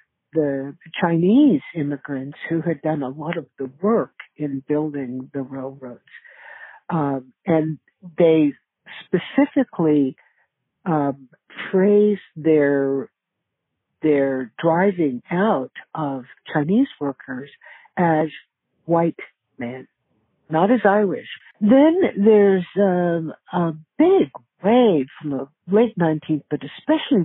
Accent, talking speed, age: American, 100 wpm, 60-79